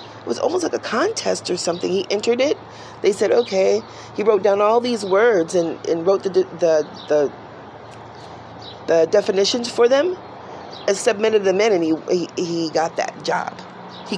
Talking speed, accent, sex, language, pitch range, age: 175 wpm, American, female, English, 165-220 Hz, 40-59